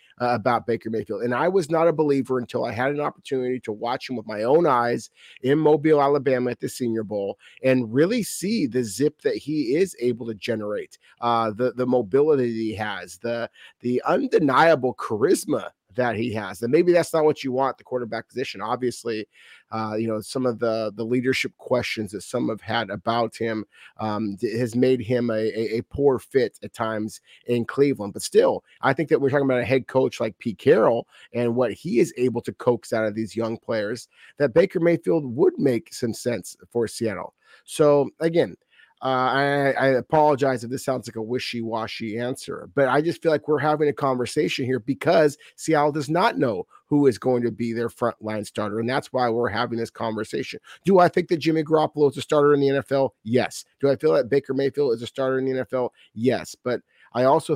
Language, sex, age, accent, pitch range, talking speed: English, male, 30-49, American, 115-145 Hz, 205 wpm